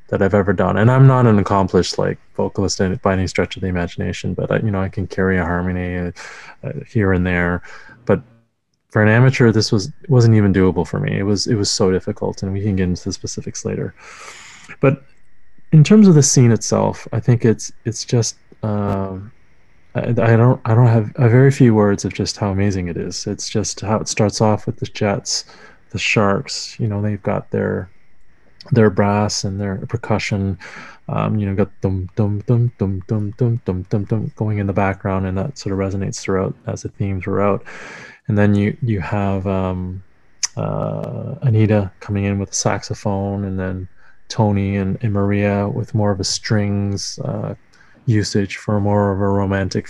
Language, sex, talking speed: English, male, 185 wpm